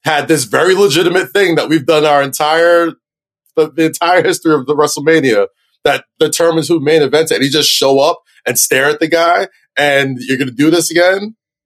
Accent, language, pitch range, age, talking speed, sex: American, English, 140-190 Hz, 20-39, 205 wpm, male